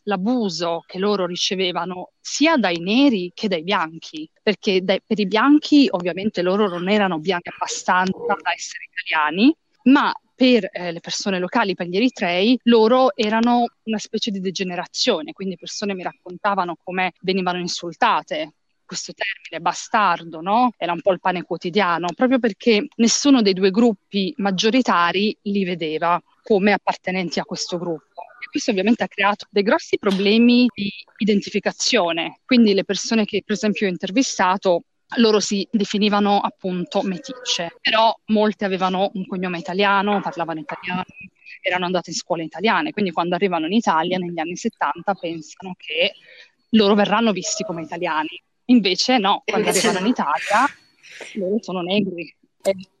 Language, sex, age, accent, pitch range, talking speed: Italian, female, 30-49, native, 180-225 Hz, 150 wpm